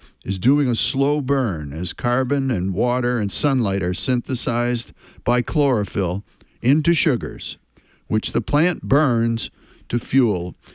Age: 60-79